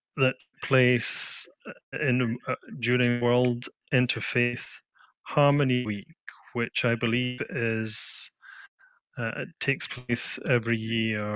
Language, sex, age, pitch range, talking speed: English, male, 30-49, 110-130 Hz, 100 wpm